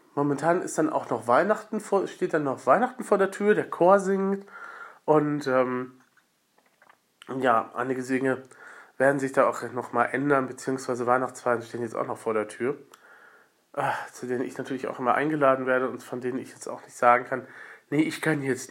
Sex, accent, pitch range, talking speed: male, German, 125-175 Hz, 190 wpm